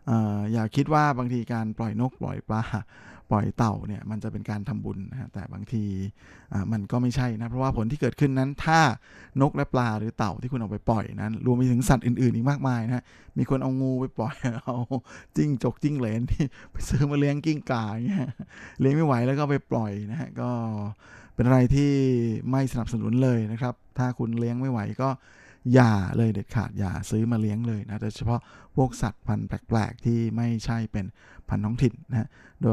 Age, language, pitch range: 20-39, Thai, 105-125 Hz